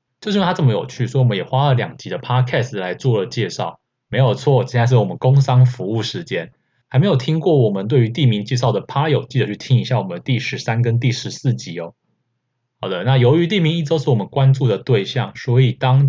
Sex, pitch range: male, 120-135 Hz